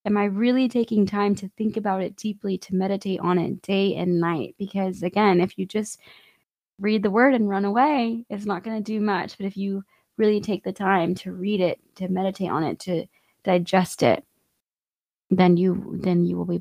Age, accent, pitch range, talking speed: 20-39, American, 190-220 Hz, 205 wpm